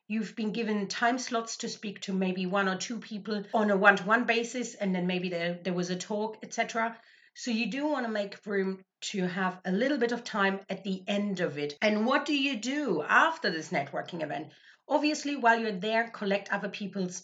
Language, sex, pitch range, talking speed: English, female, 200-260 Hz, 210 wpm